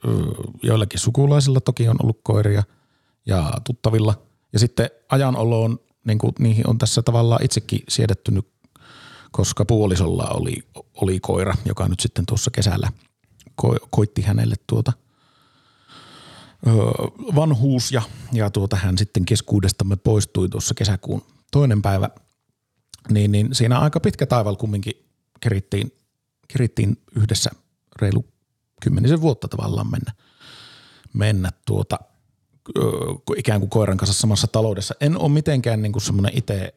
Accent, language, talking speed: native, Finnish, 115 wpm